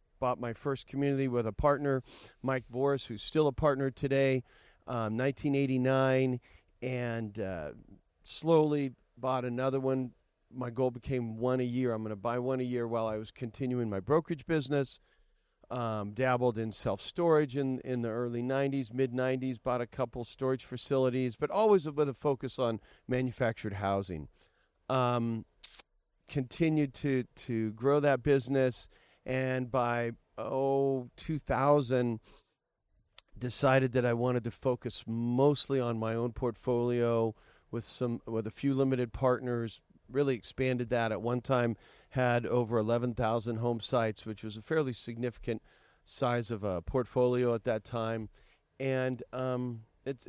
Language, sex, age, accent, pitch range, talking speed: English, male, 40-59, American, 115-135 Hz, 145 wpm